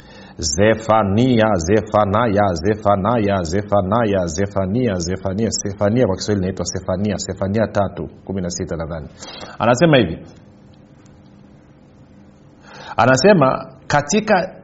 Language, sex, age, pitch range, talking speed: Swahili, male, 50-69, 105-145 Hz, 45 wpm